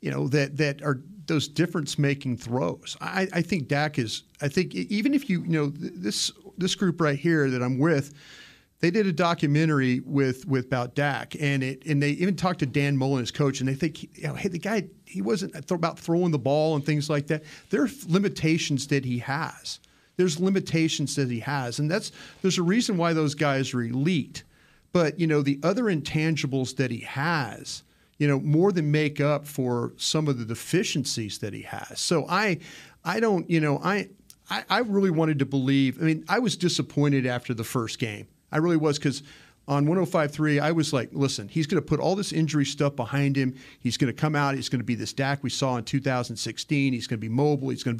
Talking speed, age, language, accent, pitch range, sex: 210 wpm, 40-59, English, American, 135-170 Hz, male